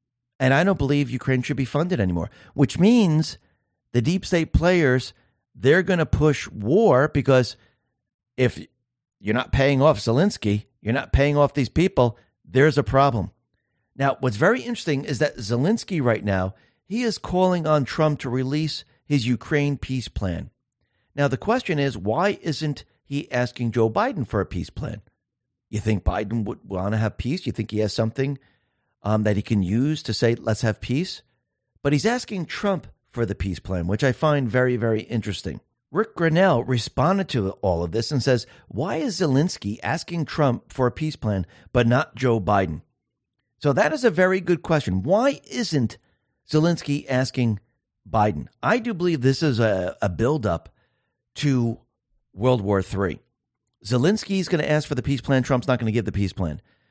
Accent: American